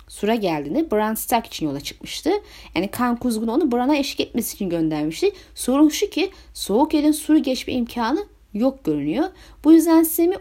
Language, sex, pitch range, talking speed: Turkish, female, 200-305 Hz, 165 wpm